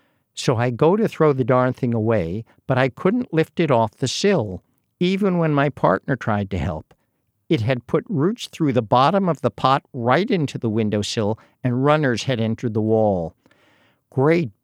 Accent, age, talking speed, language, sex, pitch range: American, 60-79, 185 wpm, English, male, 115-145 Hz